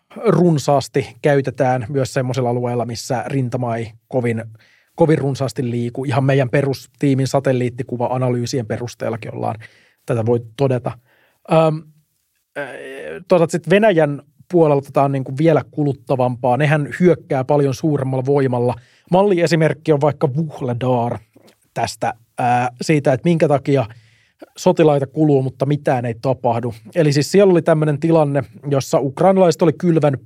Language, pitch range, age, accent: Finnish, 125-160 Hz, 30-49, native